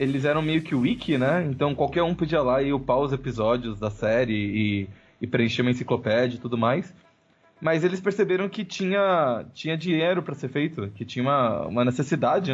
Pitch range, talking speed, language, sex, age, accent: 125-155 Hz, 190 wpm, Portuguese, male, 20-39, Brazilian